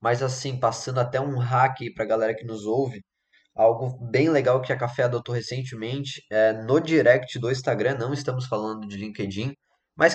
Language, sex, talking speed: Portuguese, male, 175 wpm